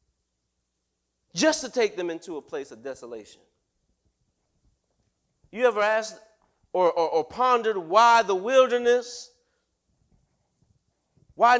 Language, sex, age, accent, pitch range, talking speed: English, male, 30-49, American, 145-220 Hz, 105 wpm